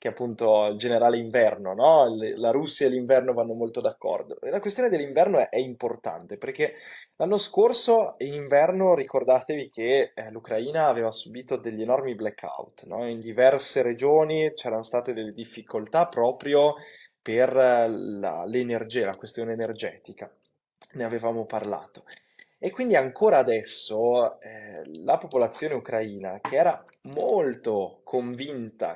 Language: Italian